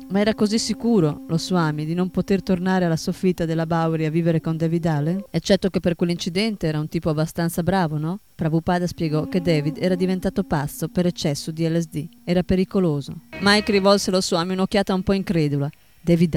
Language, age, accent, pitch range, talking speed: Italian, 20-39, native, 165-195 Hz, 185 wpm